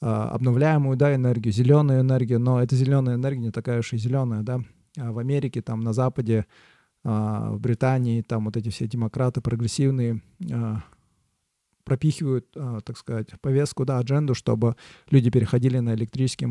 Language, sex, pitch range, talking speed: Russian, male, 115-135 Hz, 140 wpm